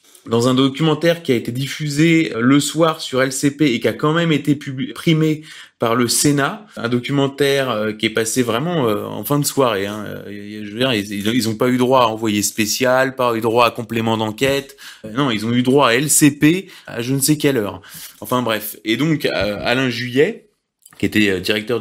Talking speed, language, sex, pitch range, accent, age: 195 wpm, French, male, 120-150 Hz, French, 20-39